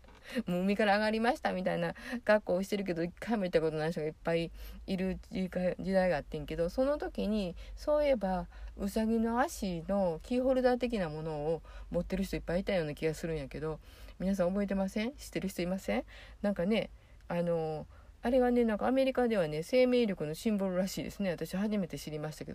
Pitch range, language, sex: 165-230 Hz, Japanese, female